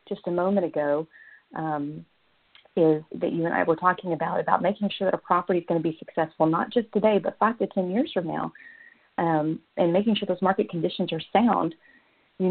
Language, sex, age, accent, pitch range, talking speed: English, female, 40-59, American, 155-185 Hz, 210 wpm